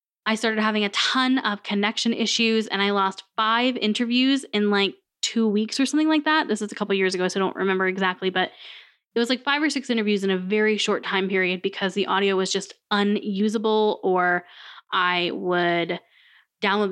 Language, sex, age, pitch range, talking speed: English, female, 10-29, 190-225 Hz, 200 wpm